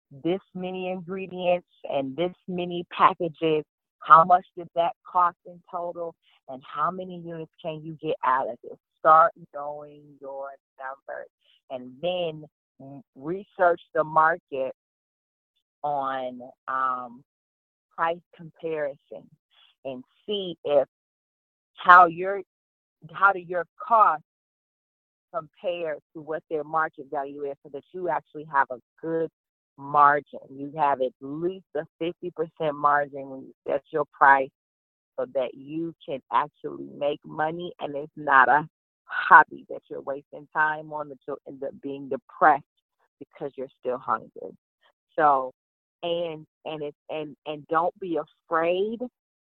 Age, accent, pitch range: 30-49, American, 140-170 Hz